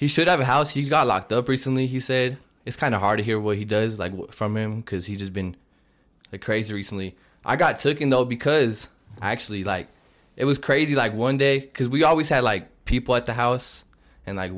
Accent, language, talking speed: American, English, 225 wpm